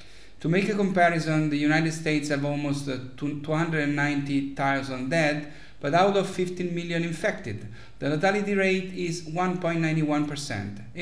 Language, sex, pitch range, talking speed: English, male, 135-170 Hz, 120 wpm